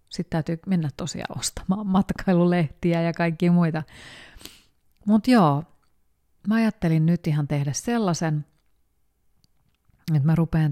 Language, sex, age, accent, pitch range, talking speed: Finnish, female, 30-49, native, 145-185 Hz, 110 wpm